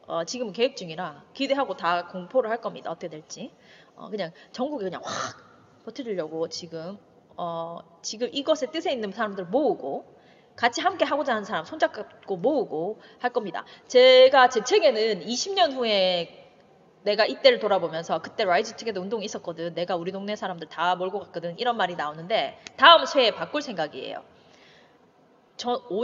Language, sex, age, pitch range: Korean, female, 20-39, 185-275 Hz